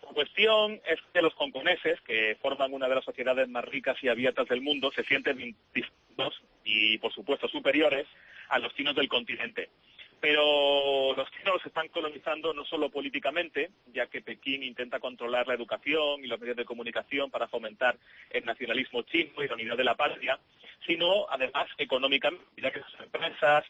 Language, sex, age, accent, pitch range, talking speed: Spanish, male, 40-59, Spanish, 130-155 Hz, 175 wpm